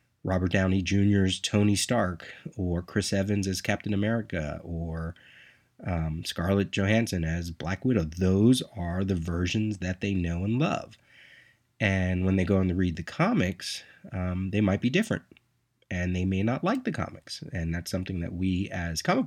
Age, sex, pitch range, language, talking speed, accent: 30-49, male, 90-115 Hz, English, 170 wpm, American